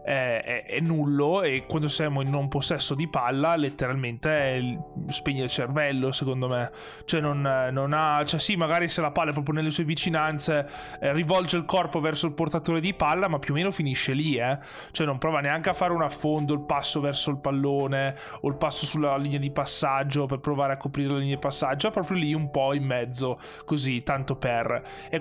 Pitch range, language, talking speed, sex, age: 135-155 Hz, Italian, 210 wpm, male, 20-39